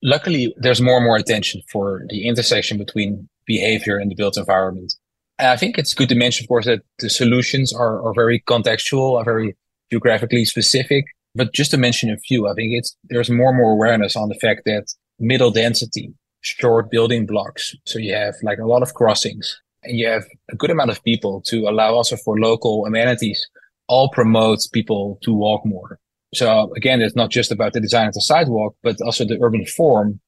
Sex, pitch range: male, 110-120 Hz